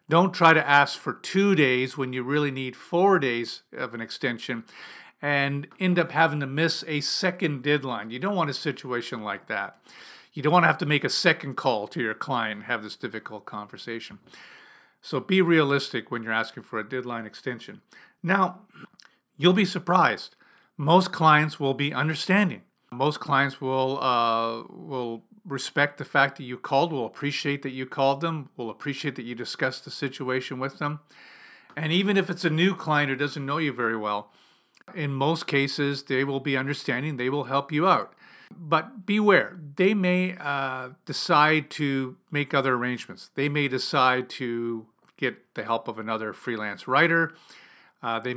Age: 50-69